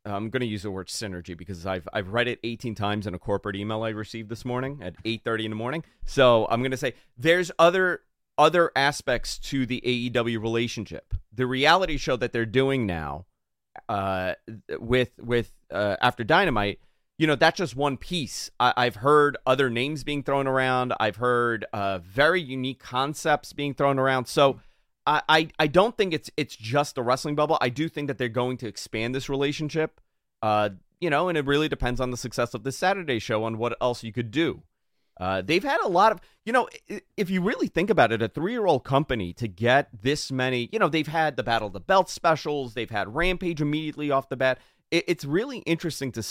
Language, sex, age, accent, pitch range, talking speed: English, male, 30-49, American, 115-150 Hz, 205 wpm